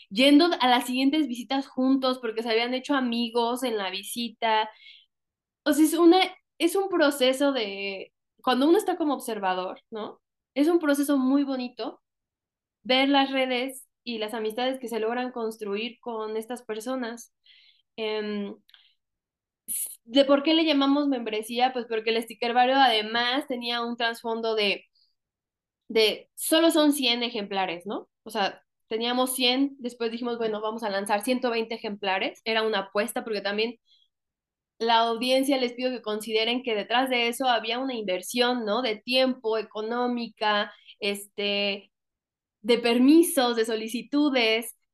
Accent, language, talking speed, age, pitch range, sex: Mexican, Spanish, 145 wpm, 10-29, 220-260 Hz, female